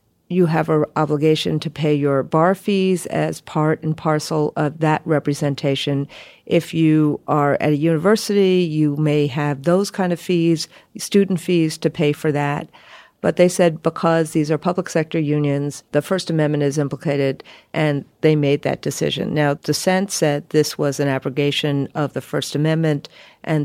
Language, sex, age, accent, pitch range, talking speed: English, female, 50-69, American, 145-180 Hz, 165 wpm